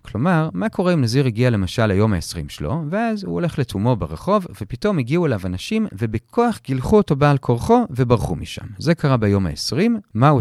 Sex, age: male, 40-59